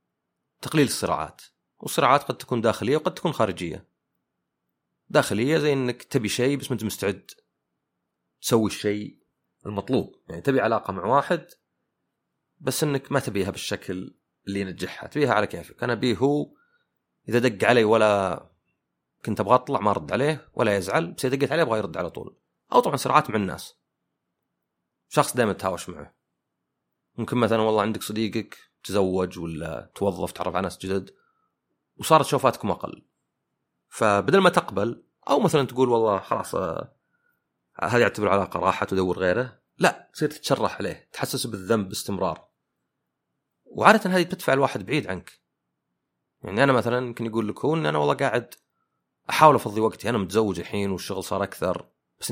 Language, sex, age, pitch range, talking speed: Arabic, male, 30-49, 100-135 Hz, 150 wpm